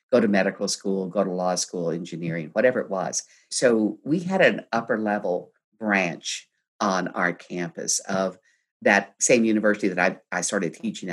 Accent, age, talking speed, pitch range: American, 50-69, 165 wpm, 100-145 Hz